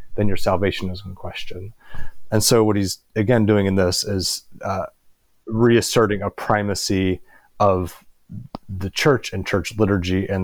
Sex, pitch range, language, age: male, 90-100 Hz, English, 30-49